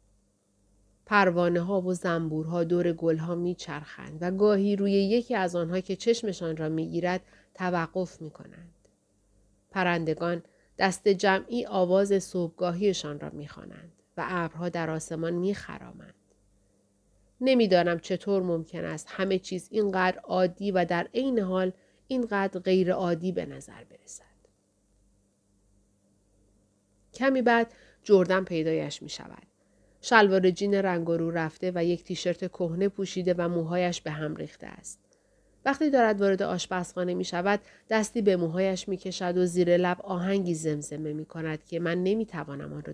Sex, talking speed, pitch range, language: female, 130 wpm, 165-205 Hz, Persian